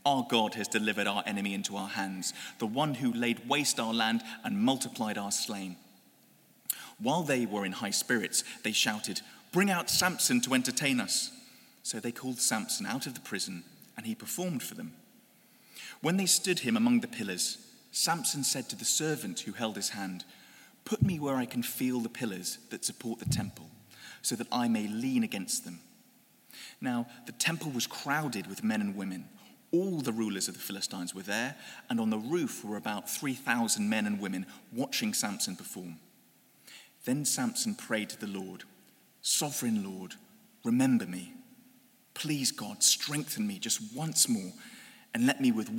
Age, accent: 30-49, British